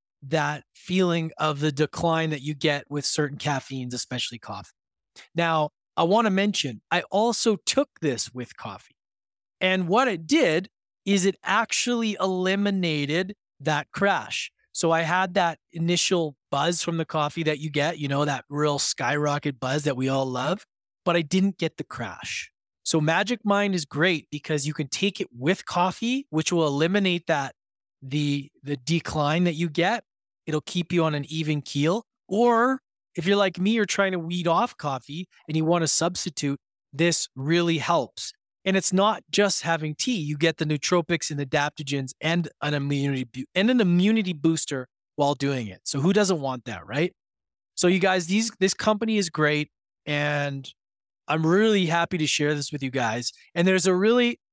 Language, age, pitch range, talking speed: English, 20-39, 145-185 Hz, 175 wpm